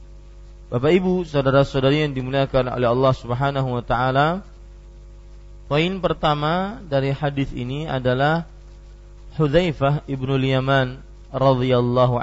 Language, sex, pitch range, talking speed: Malay, male, 120-145 Hz, 100 wpm